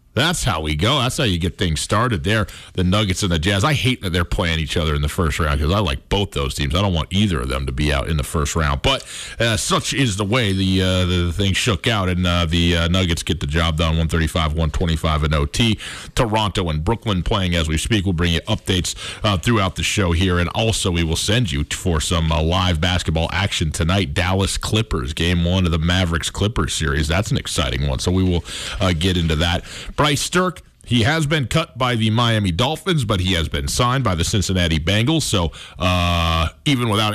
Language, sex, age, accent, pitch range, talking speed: English, male, 40-59, American, 85-110 Hz, 230 wpm